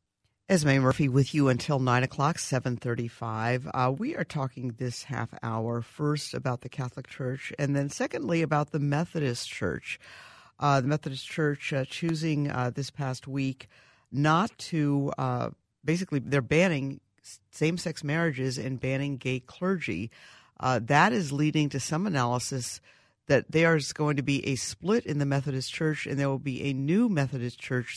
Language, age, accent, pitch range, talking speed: English, 50-69, American, 130-155 Hz, 160 wpm